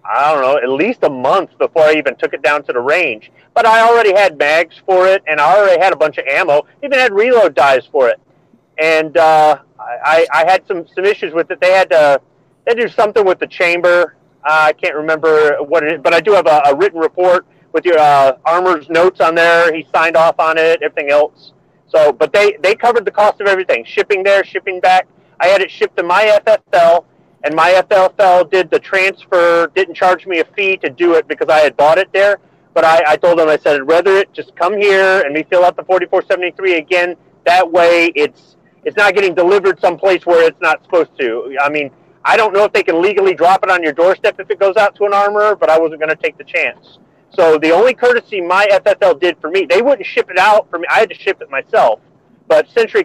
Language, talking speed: English, 240 wpm